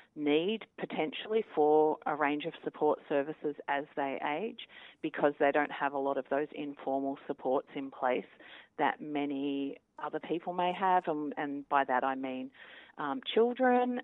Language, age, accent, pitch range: English, 40-59, Australian, 140-165 Hz